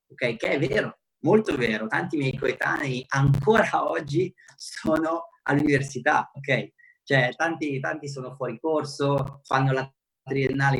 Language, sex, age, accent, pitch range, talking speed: Italian, male, 30-49, native, 130-155 Hz, 130 wpm